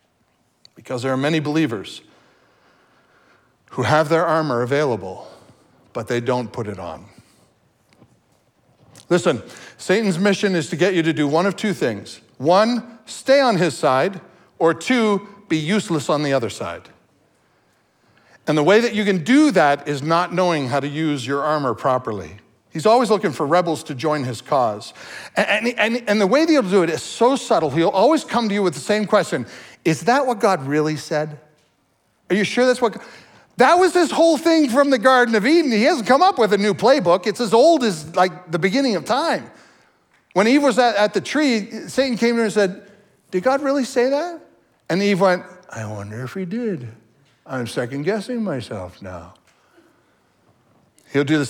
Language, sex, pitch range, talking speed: English, male, 145-225 Hz, 190 wpm